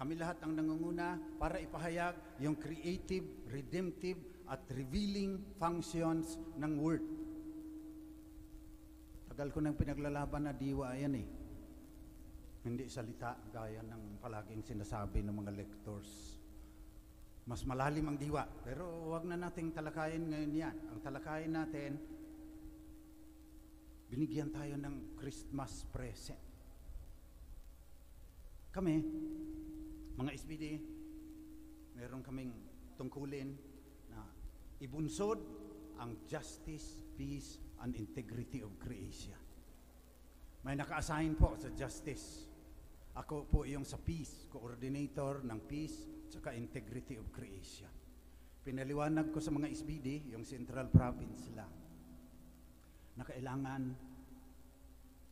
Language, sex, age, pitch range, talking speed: English, male, 50-69, 105-155 Hz, 100 wpm